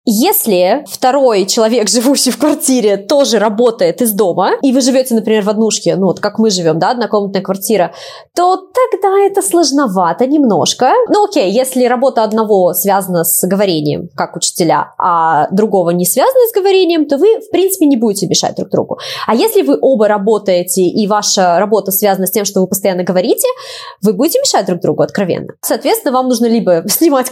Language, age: Russian, 20-39